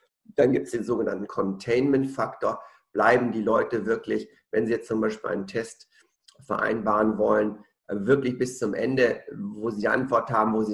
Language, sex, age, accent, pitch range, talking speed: German, male, 50-69, German, 105-130 Hz, 160 wpm